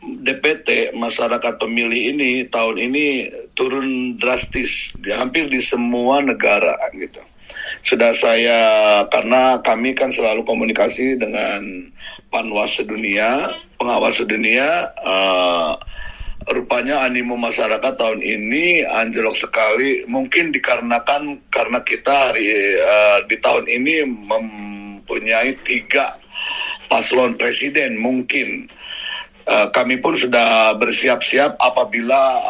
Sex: male